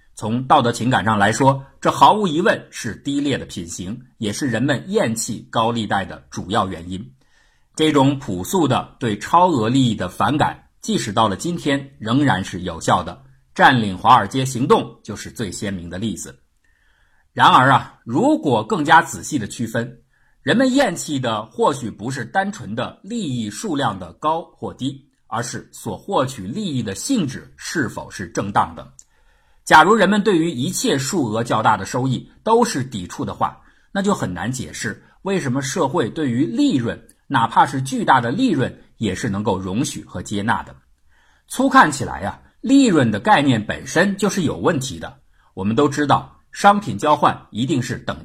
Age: 50-69